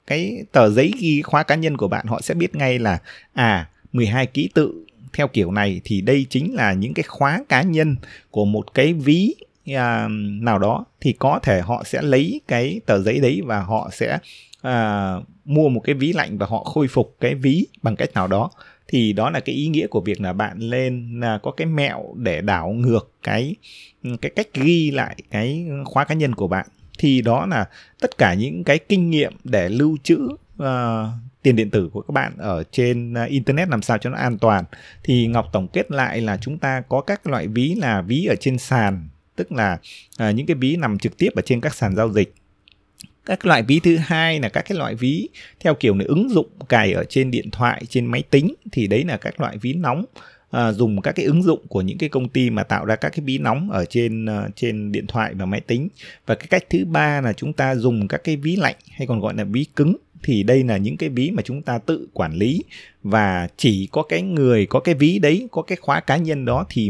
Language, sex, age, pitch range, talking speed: Vietnamese, male, 20-39, 110-145 Hz, 235 wpm